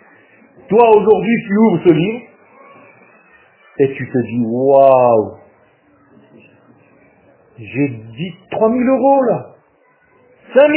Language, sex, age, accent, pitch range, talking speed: French, male, 50-69, French, 130-210 Hz, 115 wpm